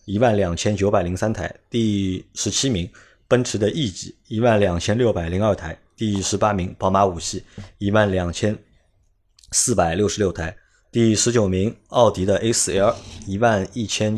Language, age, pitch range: Chinese, 20-39, 90-110 Hz